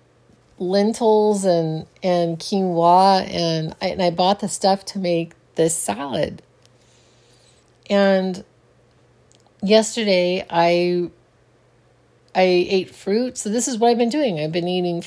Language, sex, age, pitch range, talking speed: English, female, 40-59, 165-210 Hz, 120 wpm